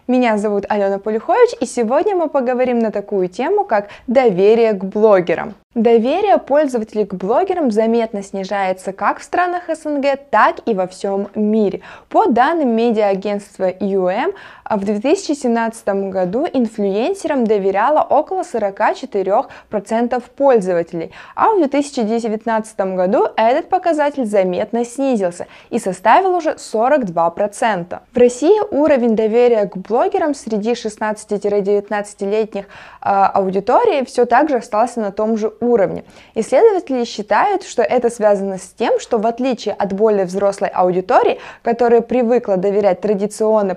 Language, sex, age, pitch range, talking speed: Russian, female, 20-39, 200-265 Hz, 120 wpm